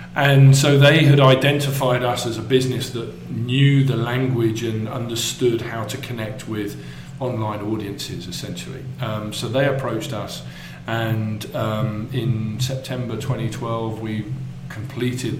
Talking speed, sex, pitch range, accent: 135 wpm, male, 110-130 Hz, British